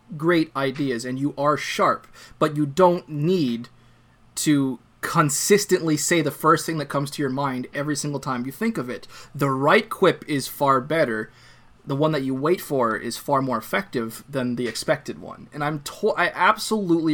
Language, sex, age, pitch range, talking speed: English, male, 20-39, 125-165 Hz, 190 wpm